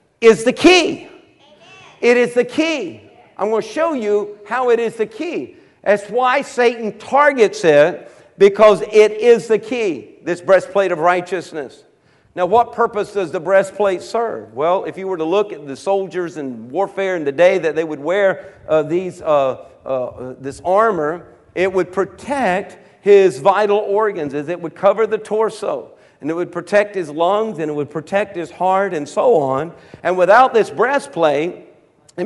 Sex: male